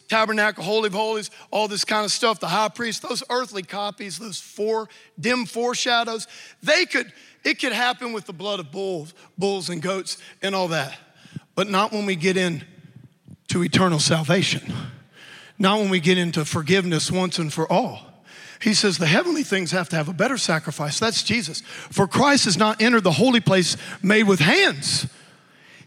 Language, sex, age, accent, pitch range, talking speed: English, male, 40-59, American, 190-295 Hz, 180 wpm